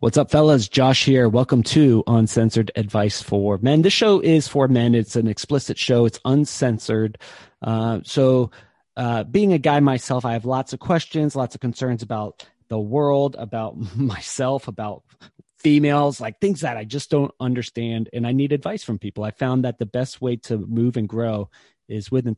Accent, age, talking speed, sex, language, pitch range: American, 30-49, 190 wpm, male, English, 110-140 Hz